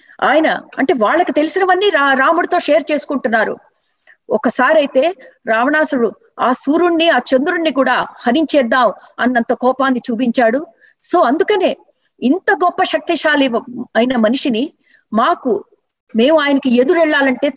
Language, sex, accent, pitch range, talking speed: Telugu, female, native, 235-315 Hz, 105 wpm